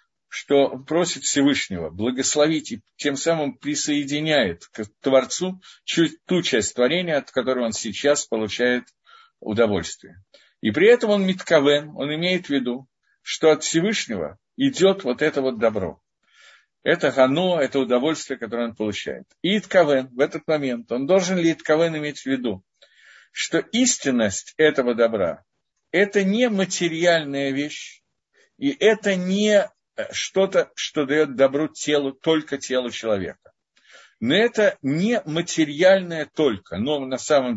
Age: 50-69